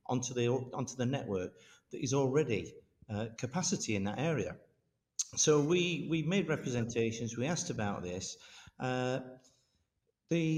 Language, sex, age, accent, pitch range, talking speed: English, male, 50-69, British, 115-130 Hz, 135 wpm